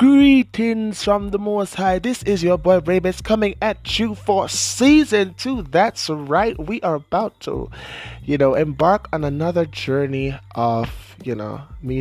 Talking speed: 160 wpm